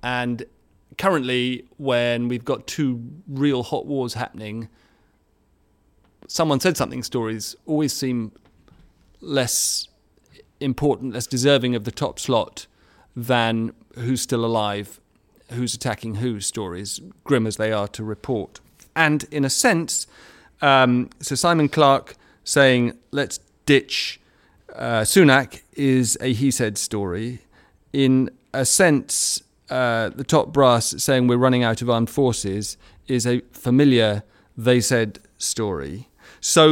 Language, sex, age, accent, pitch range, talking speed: English, male, 40-59, British, 115-140 Hz, 120 wpm